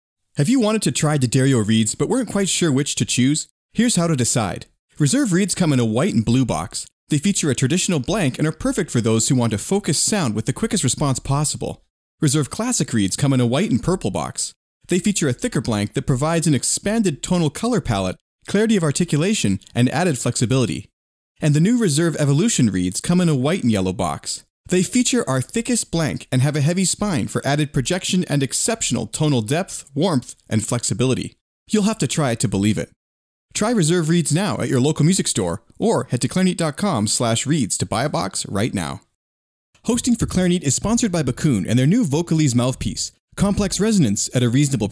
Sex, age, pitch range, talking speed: male, 30-49, 120-180 Hz, 205 wpm